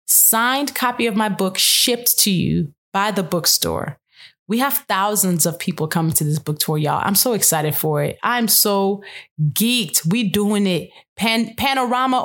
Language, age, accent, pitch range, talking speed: English, 20-39, American, 175-225 Hz, 165 wpm